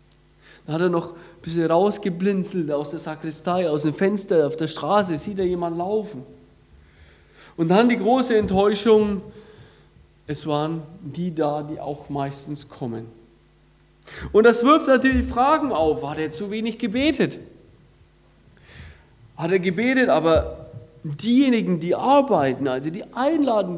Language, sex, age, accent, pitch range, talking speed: German, male, 40-59, German, 155-210 Hz, 135 wpm